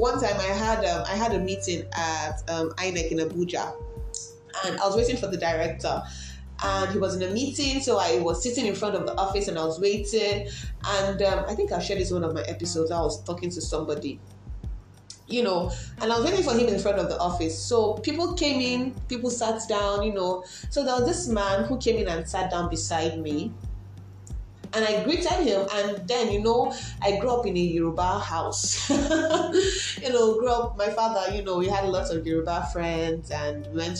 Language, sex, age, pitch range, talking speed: English, female, 20-39, 160-225 Hz, 210 wpm